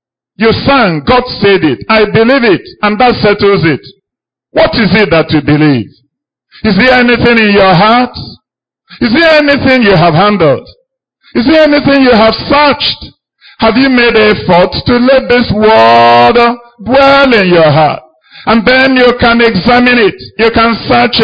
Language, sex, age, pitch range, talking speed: English, male, 50-69, 200-260 Hz, 165 wpm